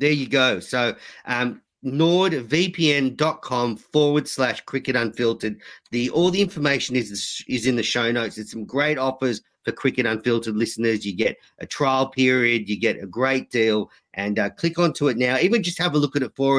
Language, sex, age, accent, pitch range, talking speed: English, male, 40-59, Australian, 115-160 Hz, 190 wpm